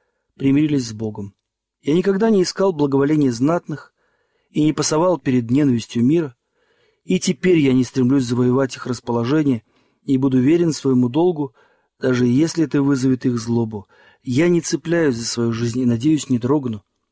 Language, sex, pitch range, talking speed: Russian, male, 120-165 Hz, 155 wpm